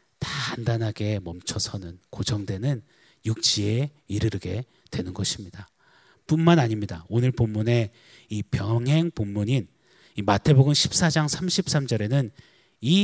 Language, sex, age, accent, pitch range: Korean, male, 30-49, native, 105-145 Hz